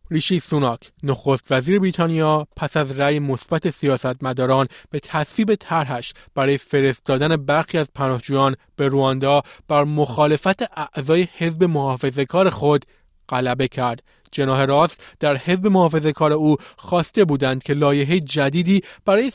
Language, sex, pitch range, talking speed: Persian, male, 135-165 Hz, 125 wpm